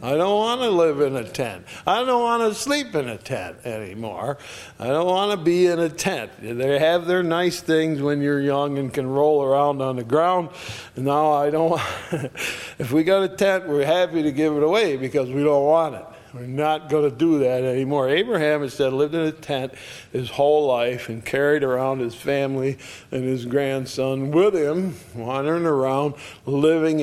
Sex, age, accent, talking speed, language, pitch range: male, 60-79, American, 195 wpm, English, 130-165 Hz